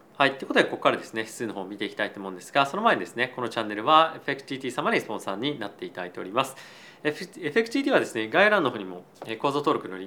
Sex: male